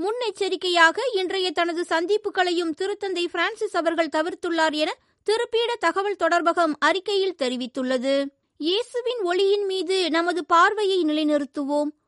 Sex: female